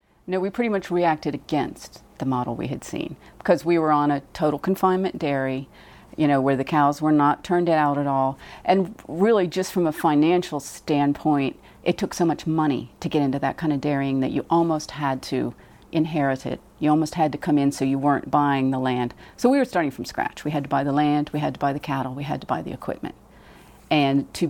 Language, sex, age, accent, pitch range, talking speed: English, female, 40-59, American, 135-165 Hz, 230 wpm